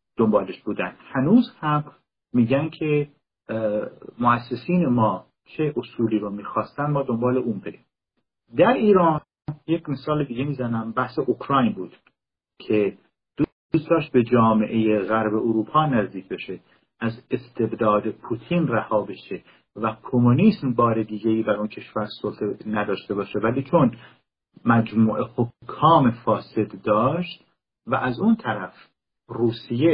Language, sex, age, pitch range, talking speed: Persian, male, 50-69, 110-140 Hz, 120 wpm